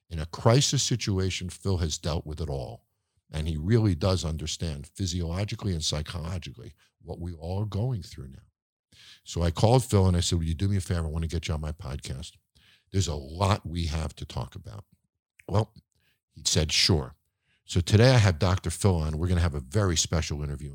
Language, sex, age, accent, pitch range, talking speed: English, male, 50-69, American, 80-105 Hz, 205 wpm